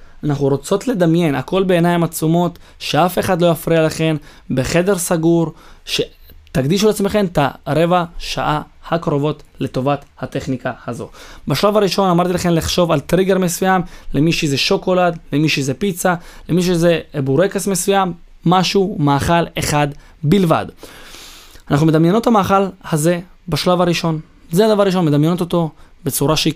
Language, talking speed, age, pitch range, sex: Hebrew, 130 wpm, 20-39, 145-185 Hz, male